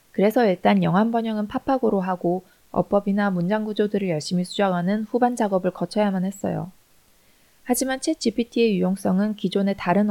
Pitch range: 180-220 Hz